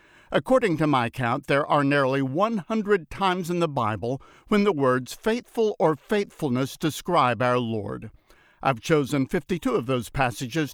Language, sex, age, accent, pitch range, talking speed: English, male, 60-79, American, 125-160 Hz, 150 wpm